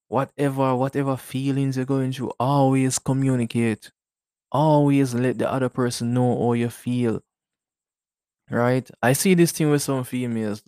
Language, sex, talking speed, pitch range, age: English, male, 140 wpm, 110-130 Hz, 20-39